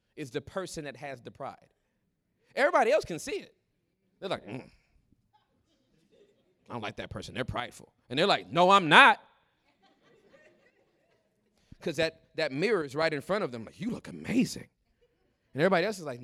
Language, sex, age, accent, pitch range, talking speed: English, male, 30-49, American, 130-175 Hz, 175 wpm